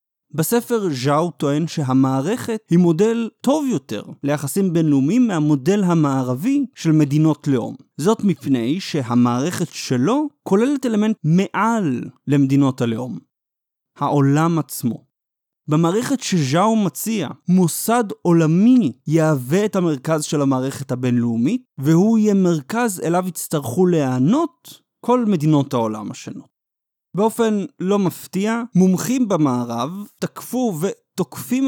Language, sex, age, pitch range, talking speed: Hebrew, male, 30-49, 150-220 Hz, 100 wpm